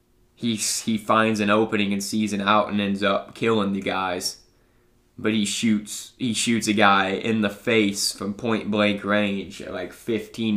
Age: 20-39